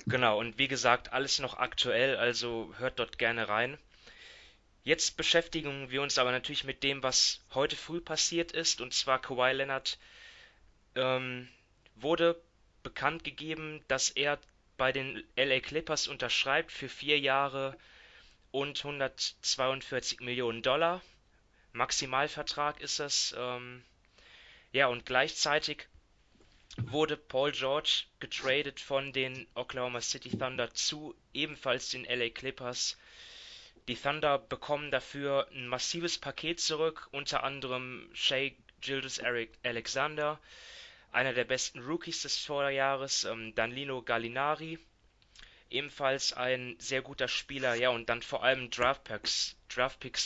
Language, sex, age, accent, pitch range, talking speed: German, male, 20-39, German, 125-150 Hz, 120 wpm